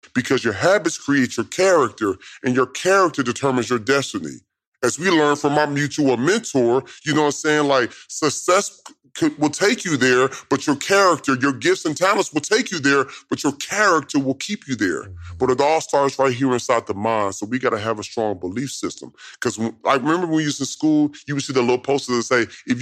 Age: 30-49